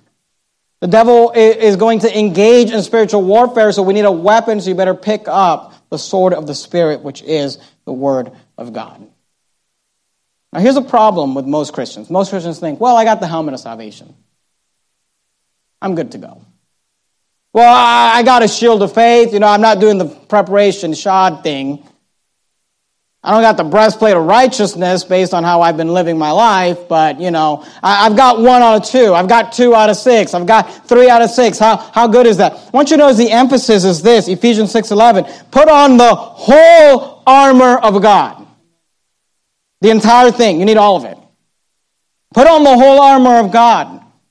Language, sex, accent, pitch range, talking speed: English, male, American, 185-235 Hz, 190 wpm